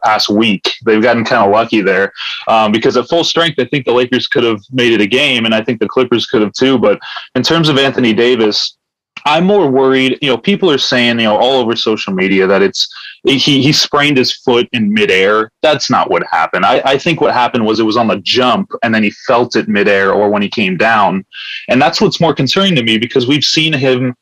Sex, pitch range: male, 110-135 Hz